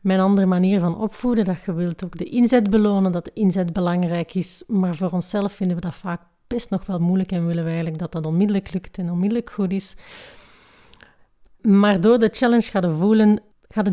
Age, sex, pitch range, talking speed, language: 30-49, female, 175-215 Hz, 205 wpm, Dutch